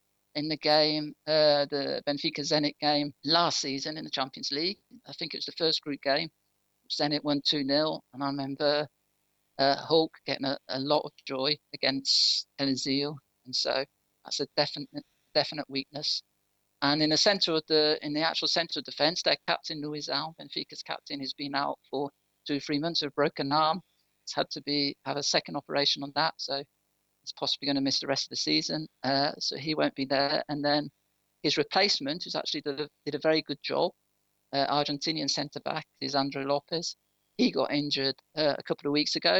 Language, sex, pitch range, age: English, male, 135-155 Hz, 50-69